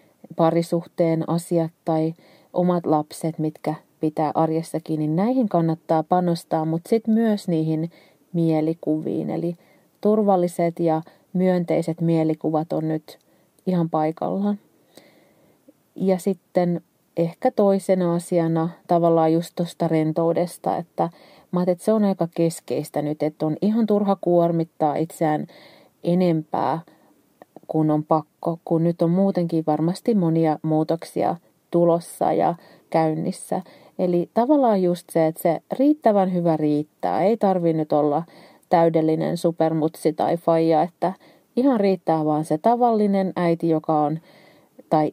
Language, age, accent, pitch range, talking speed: Finnish, 30-49, native, 160-185 Hz, 120 wpm